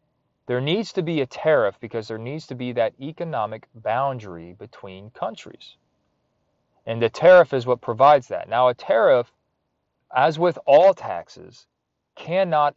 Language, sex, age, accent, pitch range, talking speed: English, male, 30-49, American, 115-155 Hz, 145 wpm